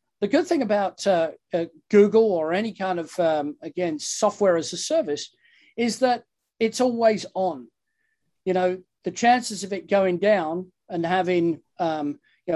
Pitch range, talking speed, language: 170-205 Hz, 160 wpm, English